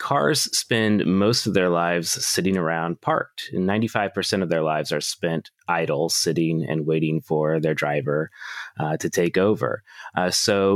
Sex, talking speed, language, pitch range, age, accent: male, 160 wpm, English, 85-100 Hz, 30-49, American